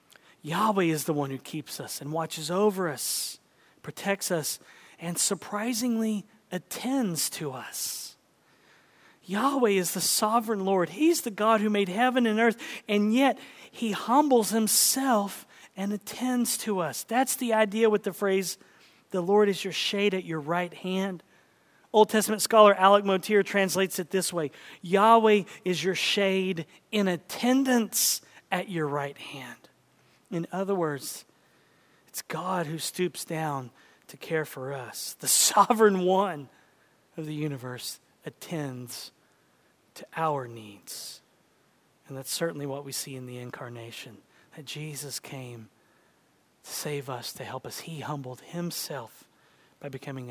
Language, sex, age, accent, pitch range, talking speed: English, male, 40-59, American, 145-210 Hz, 140 wpm